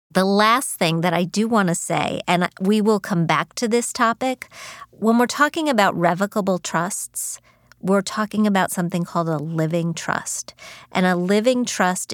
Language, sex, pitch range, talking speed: English, female, 165-190 Hz, 175 wpm